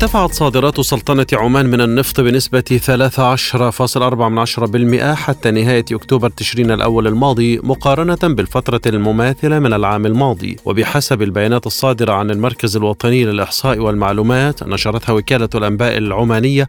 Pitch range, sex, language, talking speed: 110-135 Hz, male, Arabic, 115 wpm